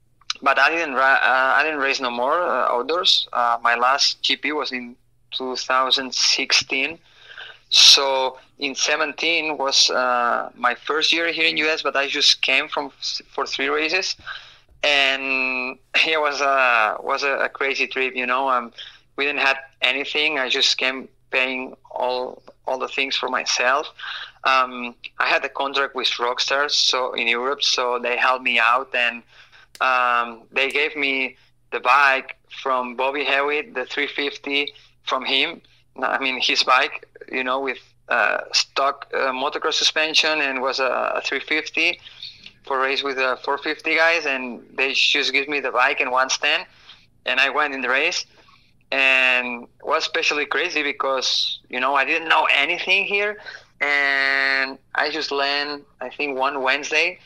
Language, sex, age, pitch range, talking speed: English, male, 20-39, 125-145 Hz, 160 wpm